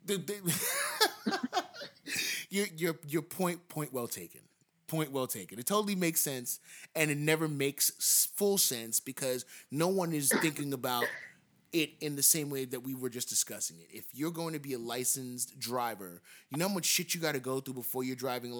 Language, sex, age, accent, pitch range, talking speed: English, male, 30-49, American, 125-175 Hz, 190 wpm